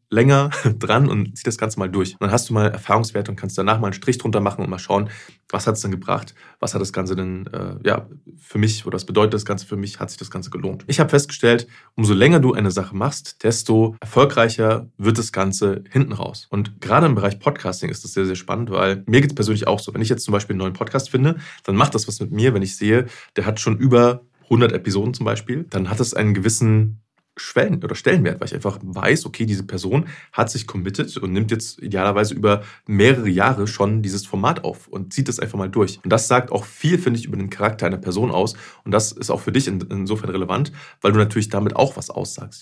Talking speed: 245 wpm